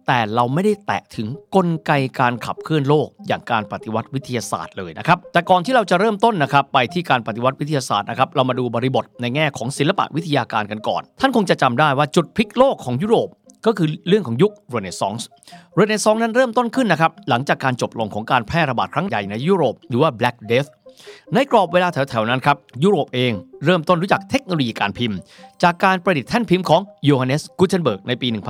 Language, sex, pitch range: Thai, male, 125-200 Hz